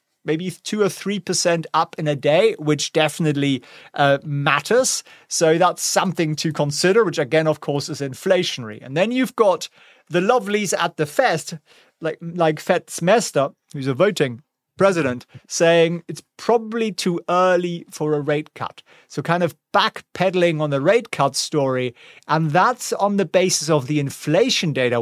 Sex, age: male, 30-49